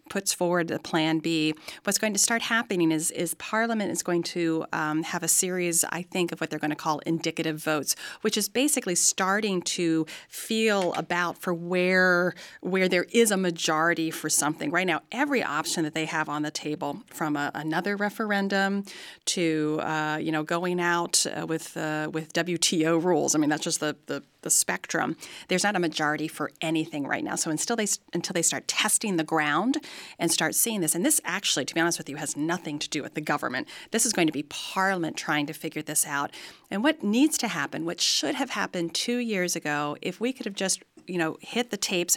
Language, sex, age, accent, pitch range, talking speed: English, female, 40-59, American, 155-200 Hz, 210 wpm